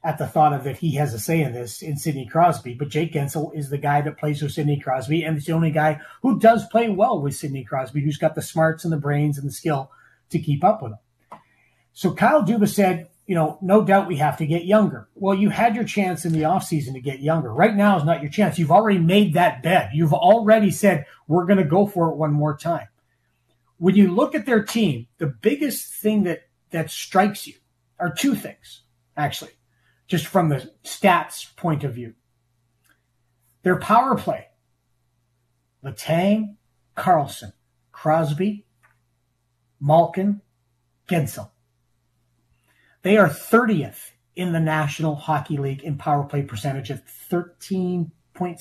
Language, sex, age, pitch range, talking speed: English, male, 30-49, 130-185 Hz, 180 wpm